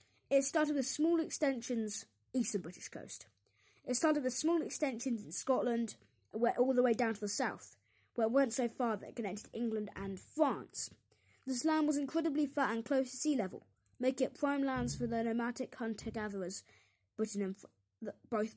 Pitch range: 210-275 Hz